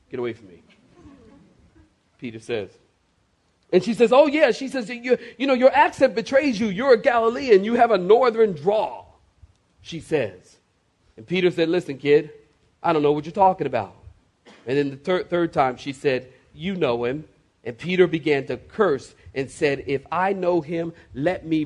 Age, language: 40-59, English